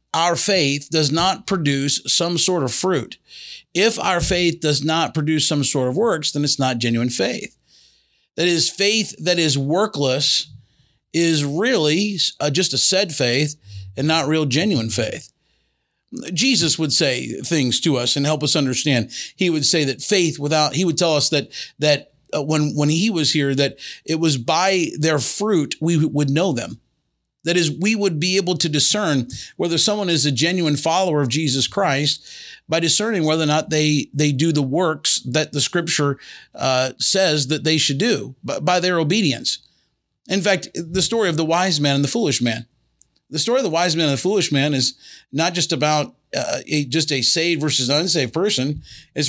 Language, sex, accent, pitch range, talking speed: English, male, American, 140-170 Hz, 185 wpm